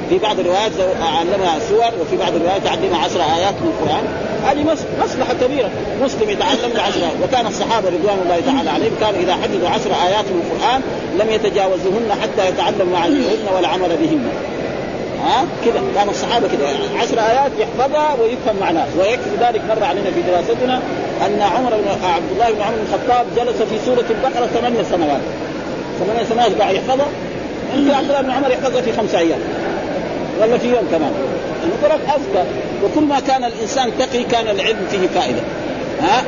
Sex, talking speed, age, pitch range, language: male, 165 wpm, 40-59, 225-275 Hz, Arabic